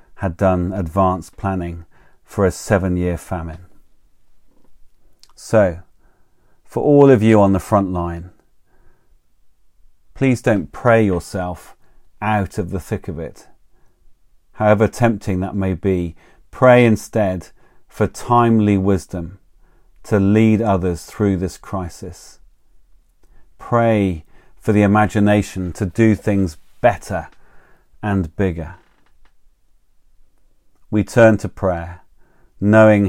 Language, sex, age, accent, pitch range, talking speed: English, male, 40-59, British, 90-105 Hz, 105 wpm